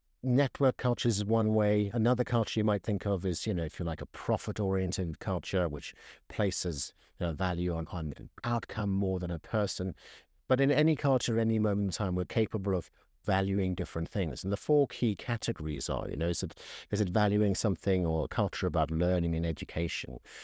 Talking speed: 195 wpm